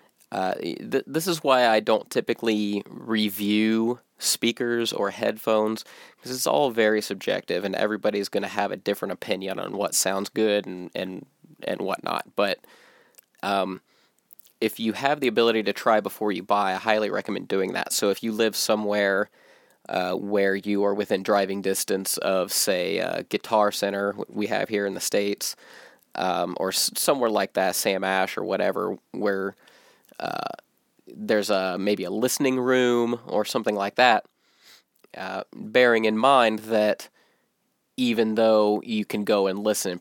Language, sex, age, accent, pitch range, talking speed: English, male, 20-39, American, 100-115 Hz, 160 wpm